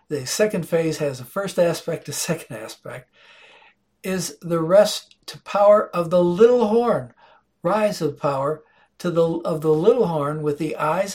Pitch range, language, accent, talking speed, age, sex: 155-210 Hz, English, American, 155 wpm, 60-79, male